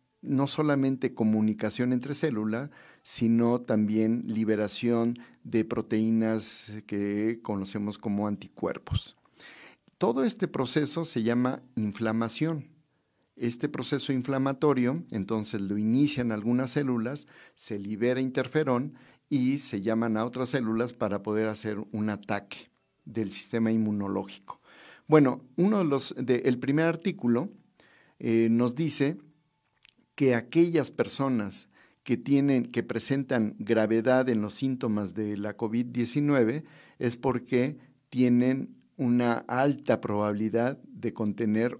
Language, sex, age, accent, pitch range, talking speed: Spanish, male, 50-69, Mexican, 110-140 Hz, 115 wpm